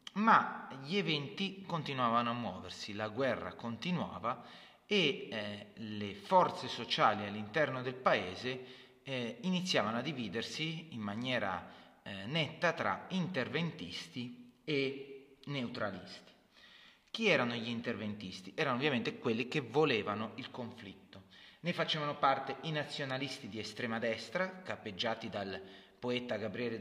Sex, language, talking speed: male, Italian, 115 wpm